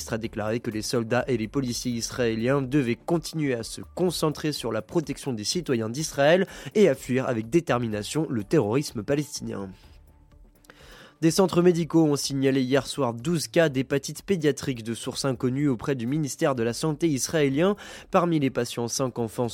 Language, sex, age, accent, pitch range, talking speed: French, male, 20-39, French, 115-150 Hz, 165 wpm